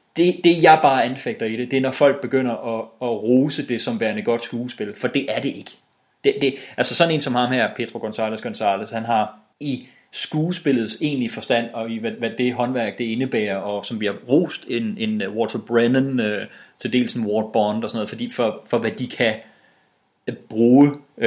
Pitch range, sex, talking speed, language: 115-135 Hz, male, 205 wpm, English